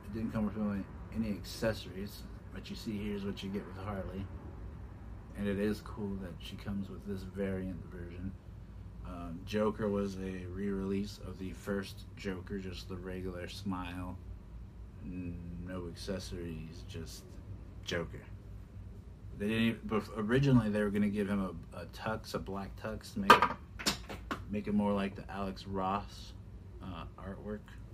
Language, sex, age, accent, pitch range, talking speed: English, male, 30-49, American, 95-105 Hz, 150 wpm